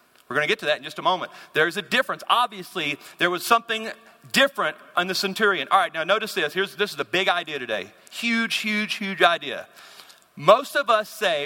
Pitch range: 190-230 Hz